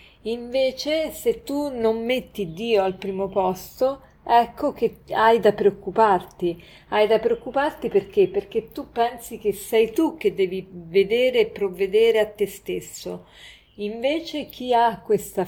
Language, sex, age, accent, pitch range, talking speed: Italian, female, 40-59, native, 190-240 Hz, 140 wpm